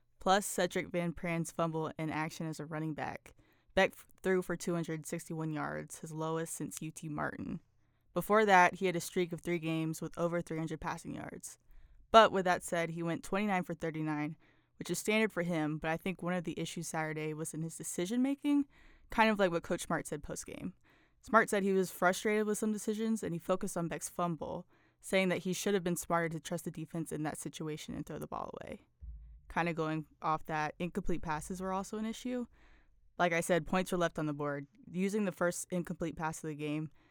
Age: 20-39